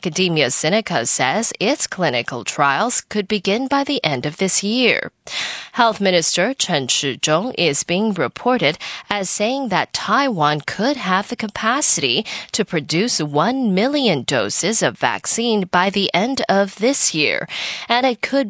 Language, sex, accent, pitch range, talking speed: English, female, American, 180-250 Hz, 145 wpm